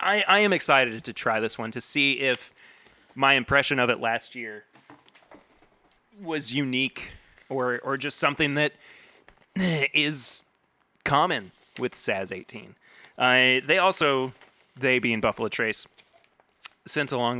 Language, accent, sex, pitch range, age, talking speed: English, American, male, 115-145 Hz, 30-49, 130 wpm